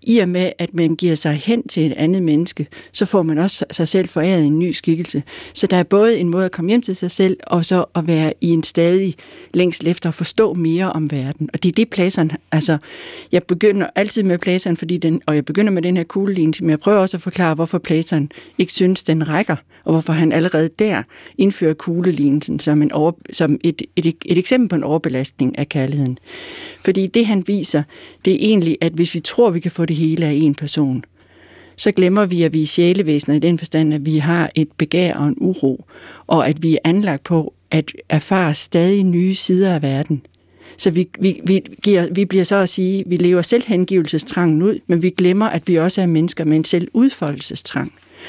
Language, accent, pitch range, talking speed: Danish, native, 160-190 Hz, 215 wpm